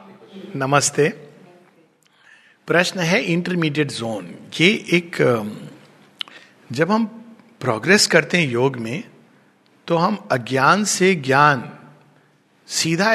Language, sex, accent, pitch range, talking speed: Hindi, male, native, 160-240 Hz, 90 wpm